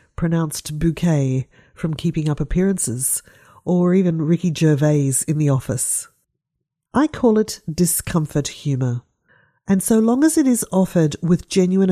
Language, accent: English, Australian